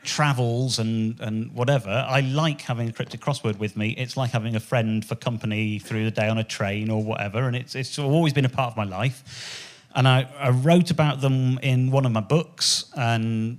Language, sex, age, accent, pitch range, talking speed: English, male, 40-59, British, 110-140 Hz, 215 wpm